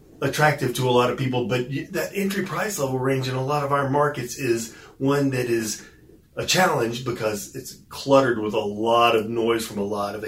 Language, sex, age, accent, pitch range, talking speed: English, male, 40-59, American, 115-145 Hz, 210 wpm